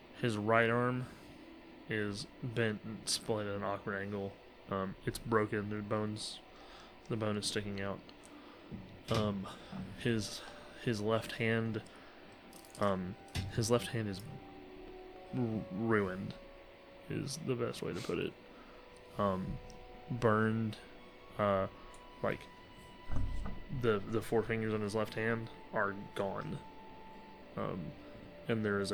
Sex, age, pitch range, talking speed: male, 20-39, 100-115 Hz, 120 wpm